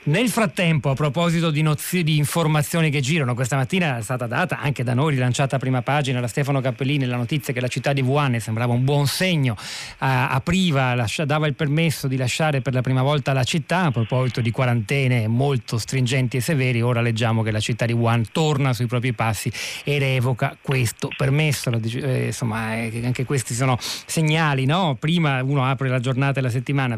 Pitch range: 125-150 Hz